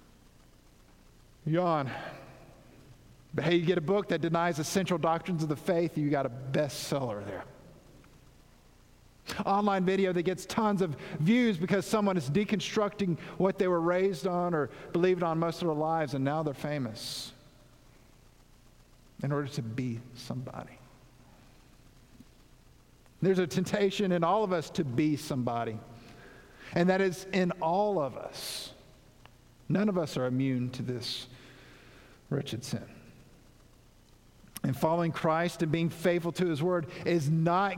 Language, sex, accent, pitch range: English, male, American, 135-185 Hz